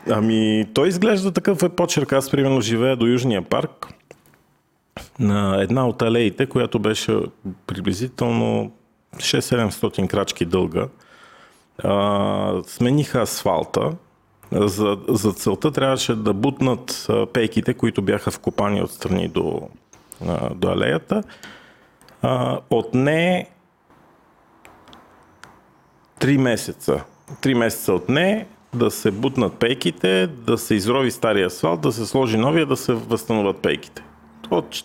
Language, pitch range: Bulgarian, 105-135 Hz